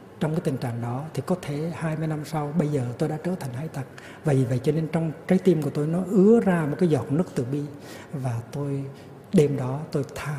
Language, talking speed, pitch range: Vietnamese, 260 wpm, 130-165 Hz